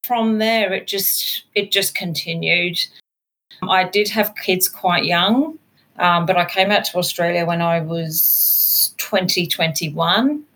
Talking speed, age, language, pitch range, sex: 150 wpm, 40-59, English, 165-195 Hz, female